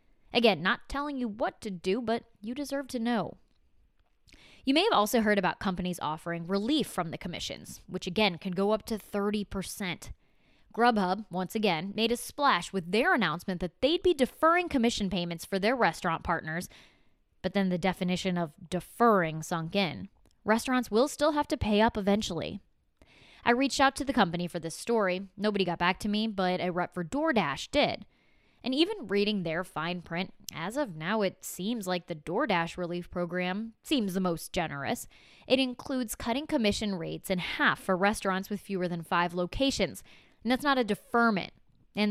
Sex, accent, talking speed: female, American, 180 wpm